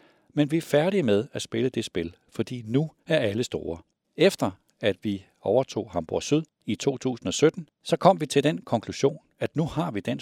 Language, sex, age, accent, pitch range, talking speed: Danish, male, 60-79, native, 105-150 Hz, 195 wpm